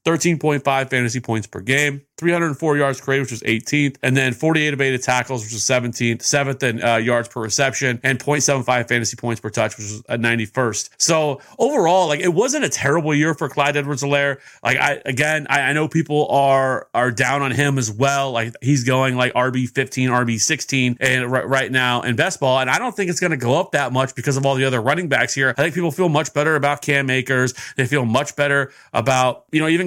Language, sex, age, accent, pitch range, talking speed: English, male, 30-49, American, 125-155 Hz, 225 wpm